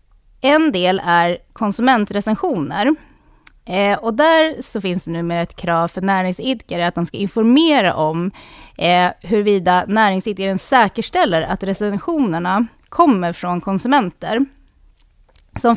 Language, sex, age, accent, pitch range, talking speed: Swedish, female, 30-49, native, 175-235 Hz, 115 wpm